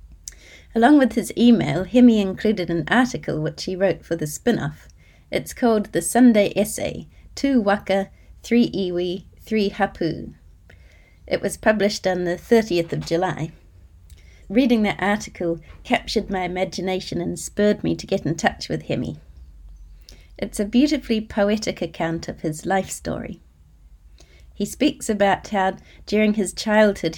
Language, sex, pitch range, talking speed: English, female, 155-205 Hz, 140 wpm